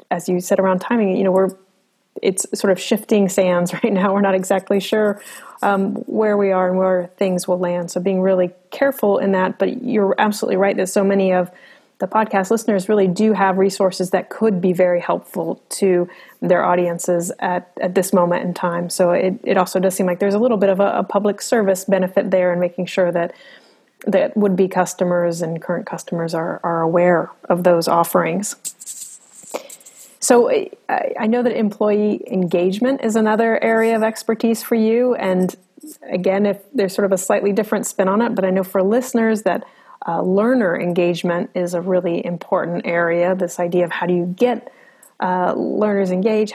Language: English